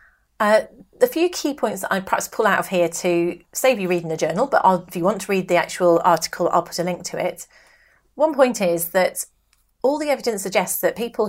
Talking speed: 230 wpm